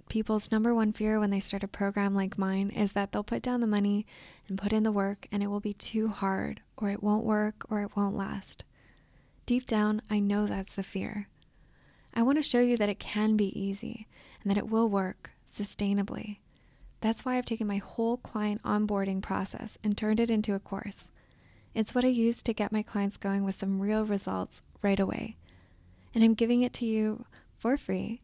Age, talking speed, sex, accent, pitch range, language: 20-39, 210 wpm, female, American, 195-225 Hz, English